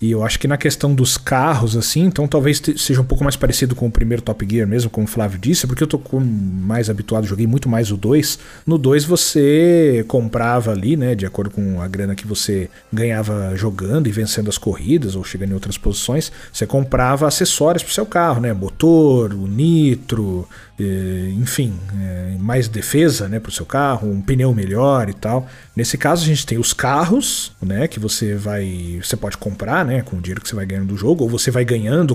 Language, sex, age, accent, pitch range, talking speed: Portuguese, male, 40-59, Brazilian, 105-140 Hz, 210 wpm